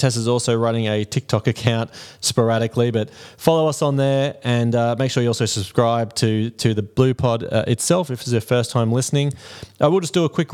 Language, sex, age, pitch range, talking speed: English, male, 20-39, 110-130 Hz, 220 wpm